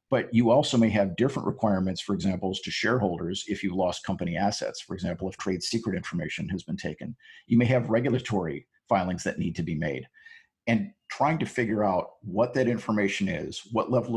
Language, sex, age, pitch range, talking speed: English, male, 50-69, 95-115 Hz, 195 wpm